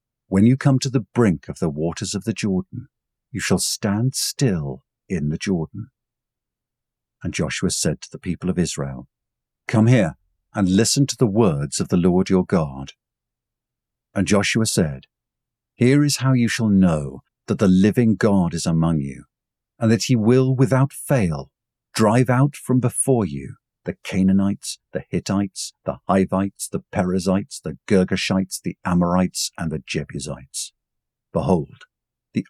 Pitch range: 90-120 Hz